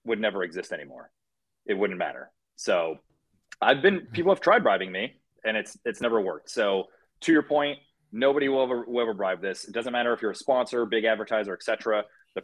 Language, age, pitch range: English, 30-49, 100-125 Hz